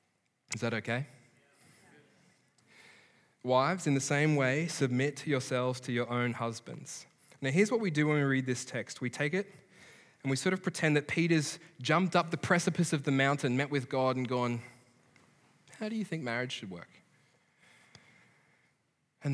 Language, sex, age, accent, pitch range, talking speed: English, male, 20-39, Australian, 125-165 Hz, 170 wpm